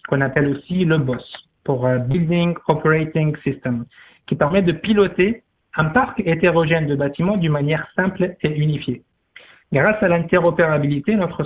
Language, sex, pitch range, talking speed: French, male, 145-175 Hz, 140 wpm